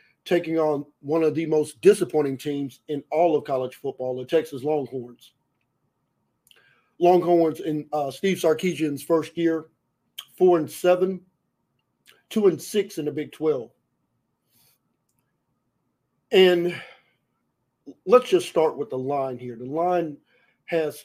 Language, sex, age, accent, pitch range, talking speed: English, male, 50-69, American, 140-170 Hz, 125 wpm